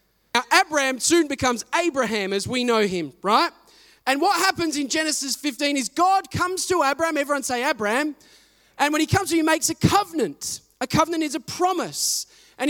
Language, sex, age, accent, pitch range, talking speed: English, male, 20-39, Australian, 250-335 Hz, 190 wpm